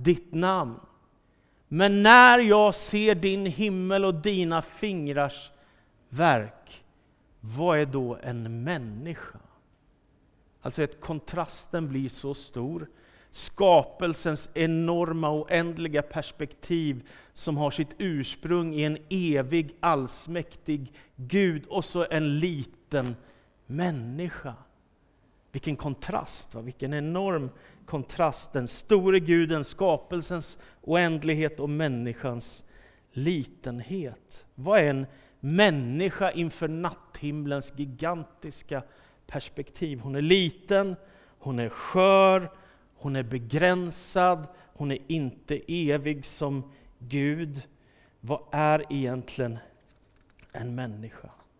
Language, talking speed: Swedish, 95 wpm